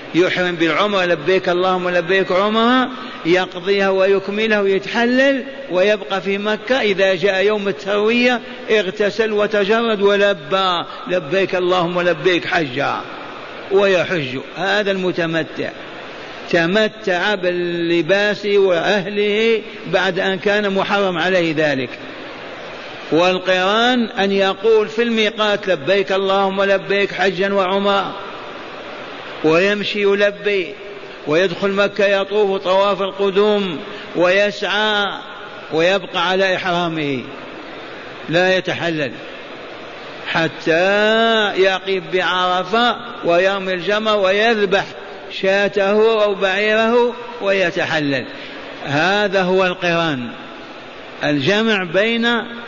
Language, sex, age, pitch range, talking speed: Arabic, male, 50-69, 180-205 Hz, 85 wpm